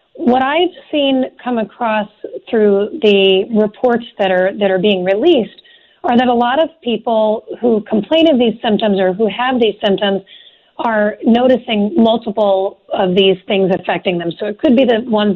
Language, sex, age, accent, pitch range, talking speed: English, female, 40-59, American, 200-260 Hz, 170 wpm